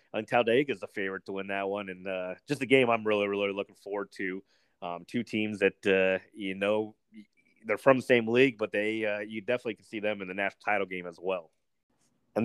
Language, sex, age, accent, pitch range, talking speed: English, male, 30-49, American, 95-110 Hz, 230 wpm